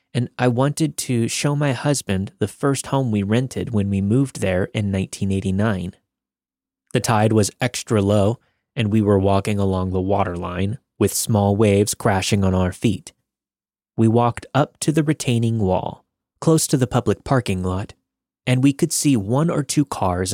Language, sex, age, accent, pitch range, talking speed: English, male, 20-39, American, 100-130 Hz, 170 wpm